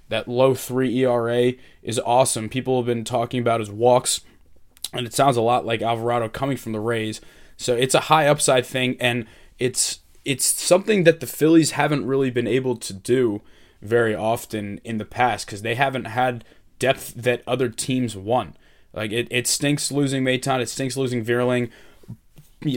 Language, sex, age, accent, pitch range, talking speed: English, male, 20-39, American, 115-135 Hz, 180 wpm